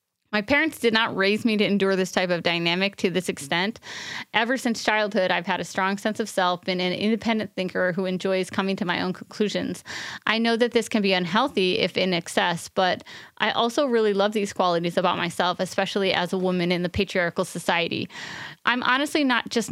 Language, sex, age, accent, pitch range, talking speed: English, female, 30-49, American, 185-225 Hz, 205 wpm